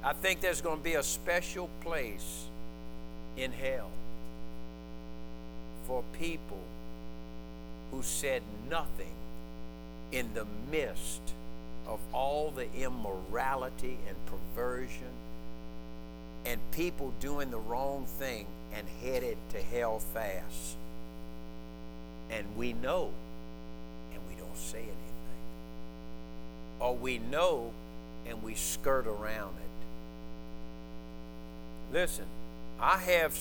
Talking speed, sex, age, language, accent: 100 wpm, male, 60-79, English, American